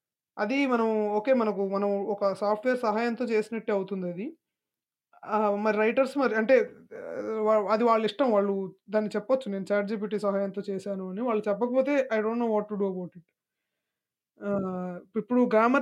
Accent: Indian